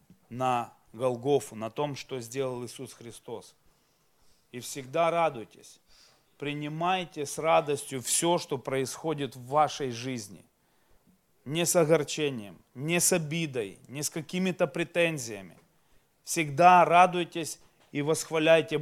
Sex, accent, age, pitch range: male, native, 30-49, 135-170 Hz